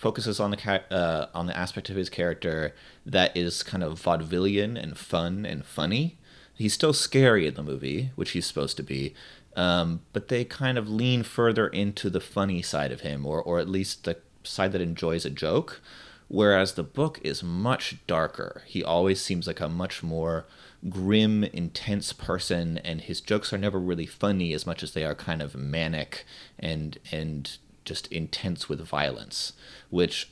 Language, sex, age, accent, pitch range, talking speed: English, male, 30-49, American, 80-100 Hz, 180 wpm